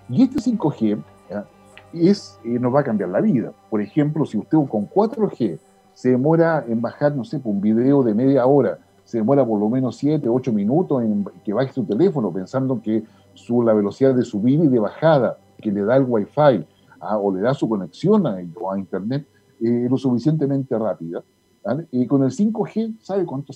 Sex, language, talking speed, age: male, Spanish, 205 wpm, 50-69